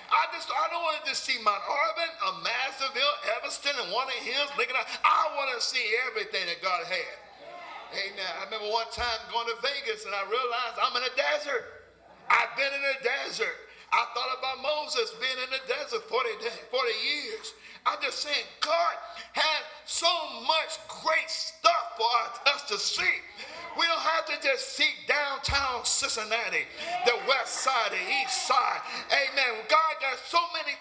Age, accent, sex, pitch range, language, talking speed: 50-69, American, male, 265-395 Hz, English, 175 wpm